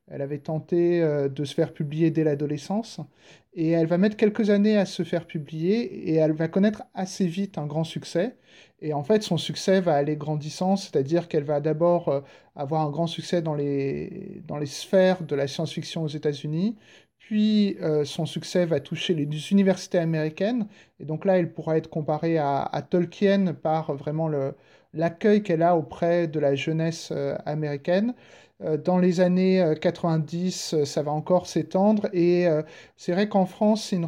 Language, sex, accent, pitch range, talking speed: French, male, French, 160-190 Hz, 175 wpm